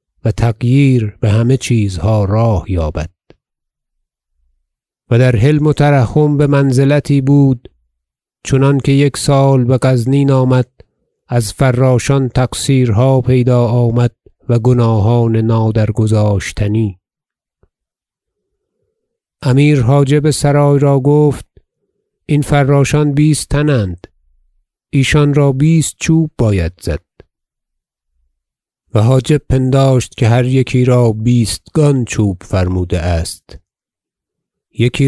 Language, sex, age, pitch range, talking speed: Persian, male, 50-69, 110-140 Hz, 95 wpm